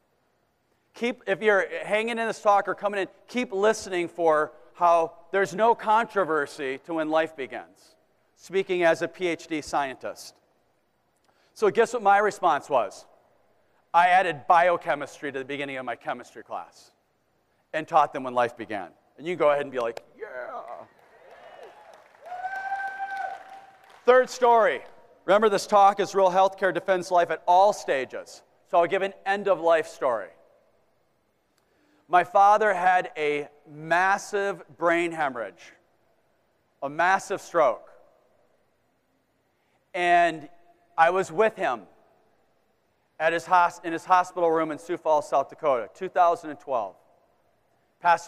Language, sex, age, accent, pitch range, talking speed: German, male, 40-59, American, 160-200 Hz, 130 wpm